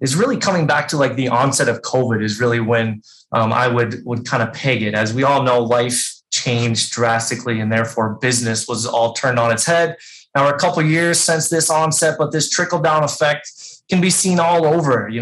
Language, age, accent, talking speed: English, 20-39, American, 225 wpm